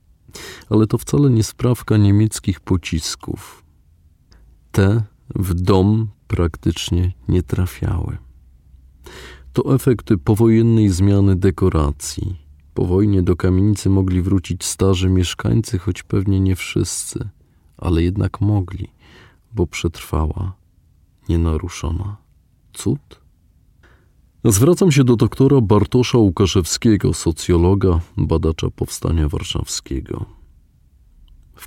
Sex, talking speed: male, 90 wpm